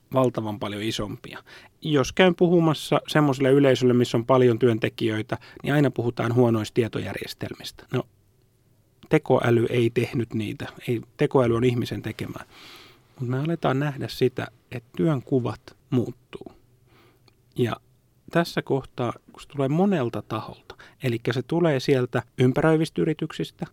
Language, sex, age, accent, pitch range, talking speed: Finnish, male, 30-49, native, 115-135 Hz, 125 wpm